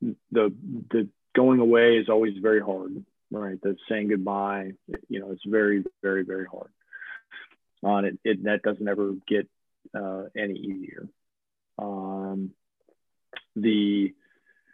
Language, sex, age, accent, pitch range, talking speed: English, male, 40-59, American, 95-115 Hz, 130 wpm